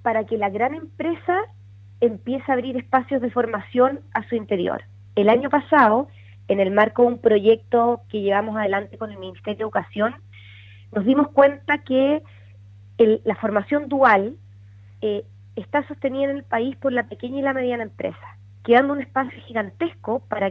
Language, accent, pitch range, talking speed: Spanish, Argentinian, 190-265 Hz, 165 wpm